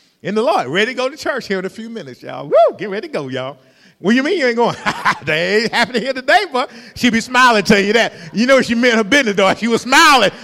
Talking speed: 285 wpm